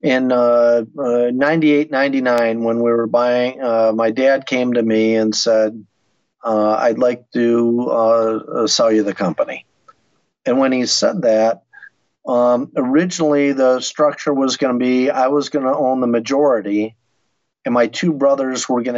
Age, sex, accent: 50-69, male, American